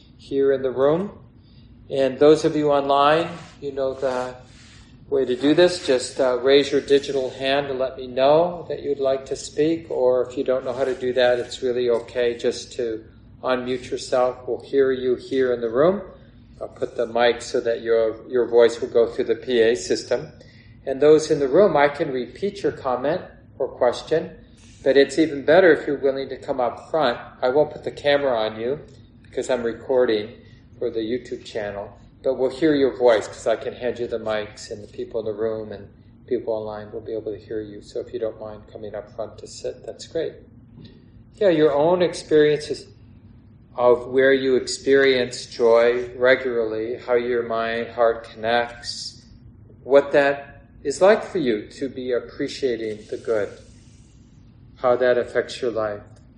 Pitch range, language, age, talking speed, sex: 115-140 Hz, English, 40-59, 185 wpm, male